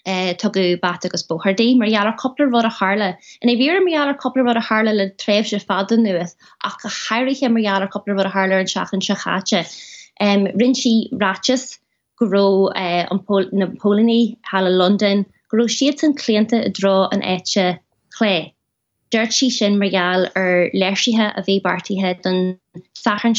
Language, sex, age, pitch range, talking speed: English, female, 20-39, 185-225 Hz, 155 wpm